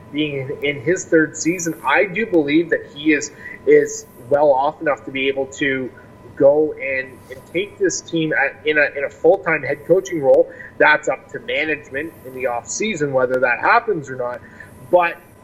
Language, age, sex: English, 30-49, male